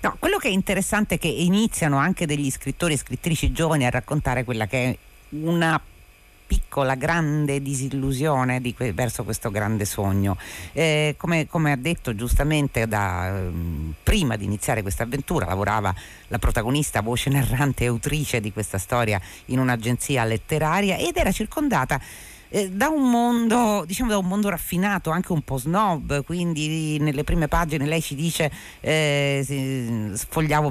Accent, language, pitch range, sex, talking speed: native, Italian, 120-160 Hz, female, 145 wpm